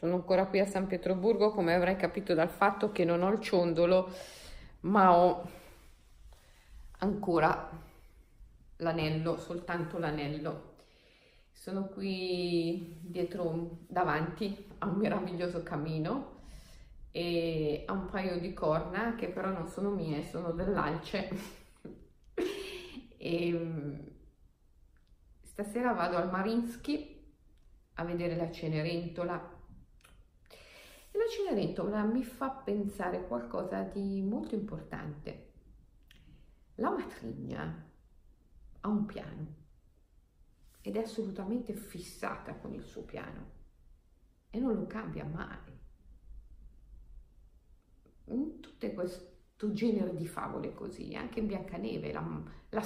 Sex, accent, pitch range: female, native, 160-210 Hz